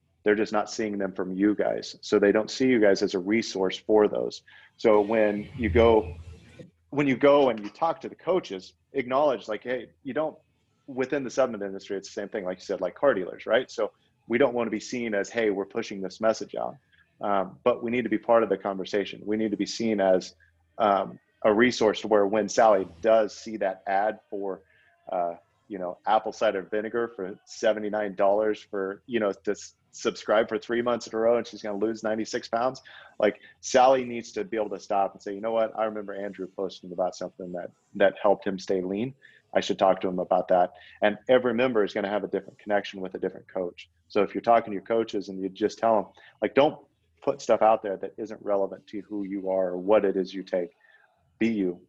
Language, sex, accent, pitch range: English, male, American, 95-115 Hz